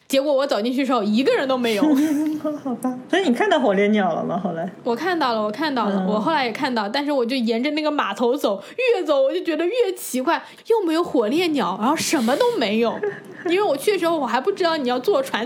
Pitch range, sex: 230-305 Hz, female